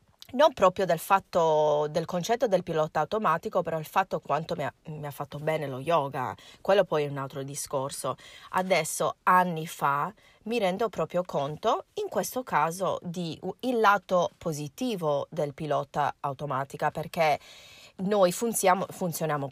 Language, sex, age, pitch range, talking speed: Italian, female, 30-49, 150-195 Hz, 150 wpm